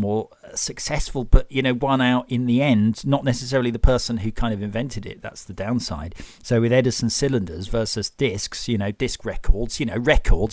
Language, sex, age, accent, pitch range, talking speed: English, male, 40-59, British, 105-130 Hz, 200 wpm